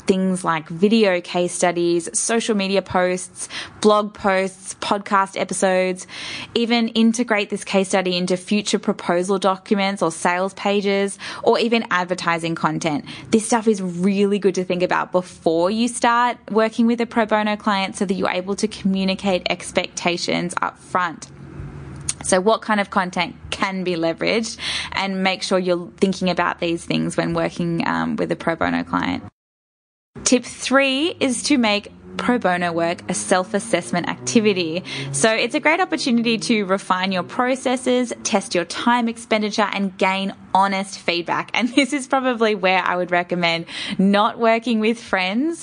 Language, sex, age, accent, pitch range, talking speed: English, female, 10-29, Australian, 180-220 Hz, 155 wpm